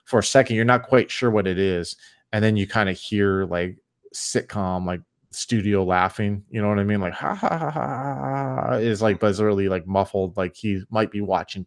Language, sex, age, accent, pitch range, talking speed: English, male, 20-39, American, 90-105 Hz, 210 wpm